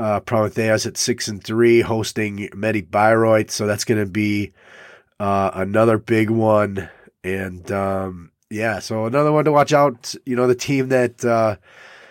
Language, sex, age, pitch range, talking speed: English, male, 30-49, 100-120 Hz, 165 wpm